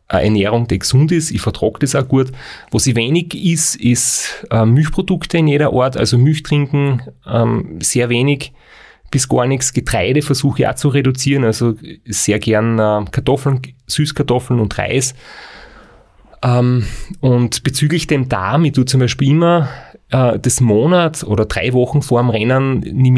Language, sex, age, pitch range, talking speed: German, male, 30-49, 110-140 Hz, 150 wpm